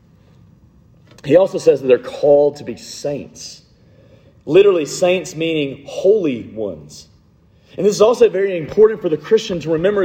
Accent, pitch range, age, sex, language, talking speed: American, 150-220 Hz, 40-59, male, English, 150 wpm